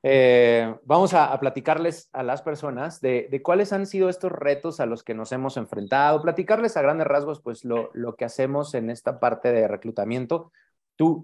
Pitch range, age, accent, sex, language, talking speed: 115-150 Hz, 30-49, Mexican, male, Spanish, 190 wpm